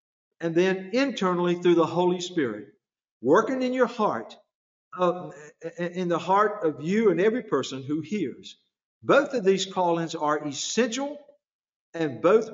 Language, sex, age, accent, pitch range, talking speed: English, male, 50-69, American, 170-275 Hz, 145 wpm